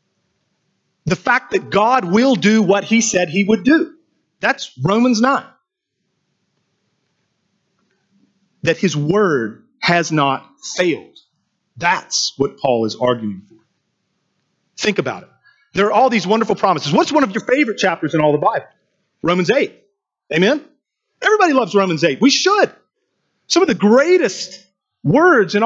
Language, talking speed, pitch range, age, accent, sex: English, 145 wpm, 175-270 Hz, 40-59, American, male